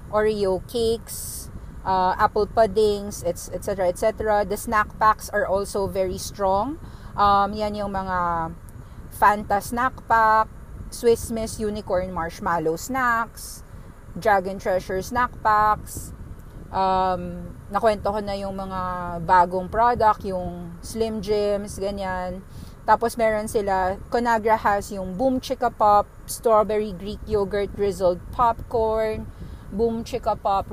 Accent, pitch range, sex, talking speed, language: Filipino, 180-220 Hz, female, 115 wpm, English